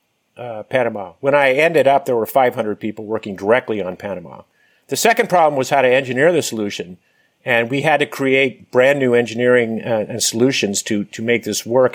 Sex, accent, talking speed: male, American, 195 wpm